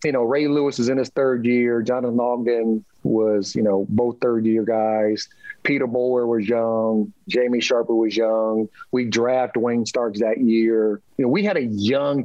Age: 40-59